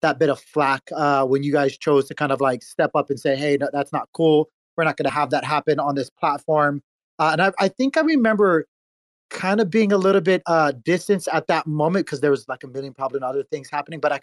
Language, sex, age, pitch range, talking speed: English, male, 30-49, 145-190 Hz, 260 wpm